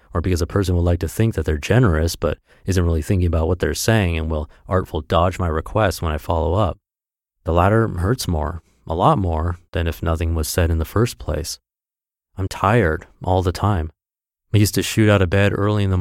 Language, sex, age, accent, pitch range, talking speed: English, male, 30-49, American, 85-105 Hz, 225 wpm